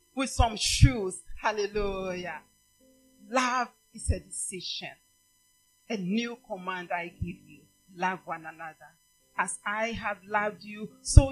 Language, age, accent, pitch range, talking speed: English, 40-59, Nigerian, 210-270 Hz, 120 wpm